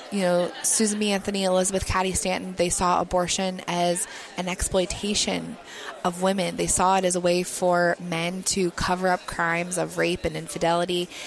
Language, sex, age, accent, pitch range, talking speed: English, female, 20-39, American, 170-190 Hz, 170 wpm